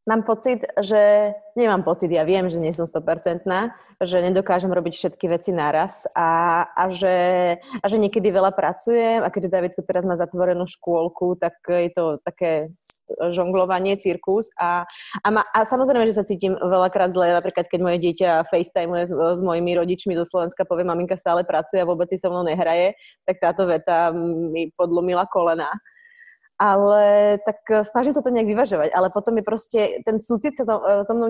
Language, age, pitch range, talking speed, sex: Slovak, 20-39, 175-210 Hz, 180 wpm, female